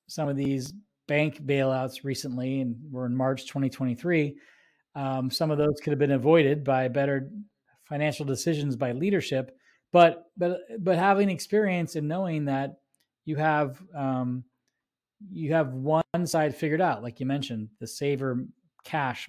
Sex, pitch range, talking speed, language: male, 130-155 Hz, 150 wpm, English